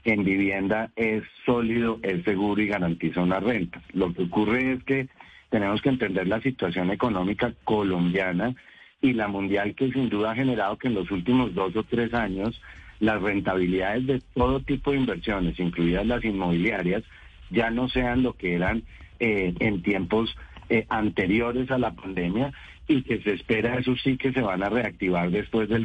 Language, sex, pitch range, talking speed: Spanish, male, 95-125 Hz, 175 wpm